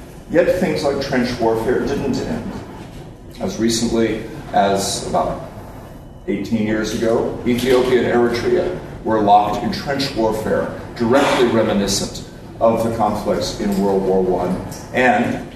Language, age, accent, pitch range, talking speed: English, 50-69, American, 105-130 Hz, 125 wpm